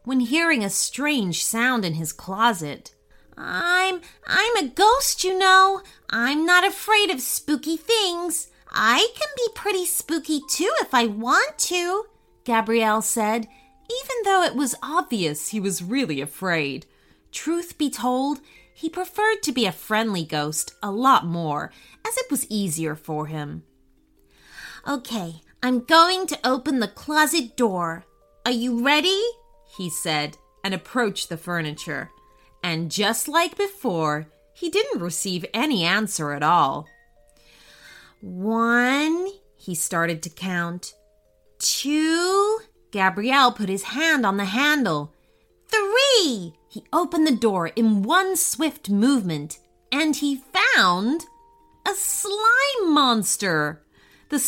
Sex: female